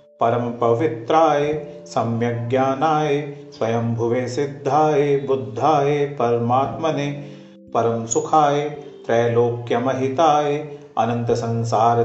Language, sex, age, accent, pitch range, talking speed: Hindi, male, 40-59, native, 120-150 Hz, 60 wpm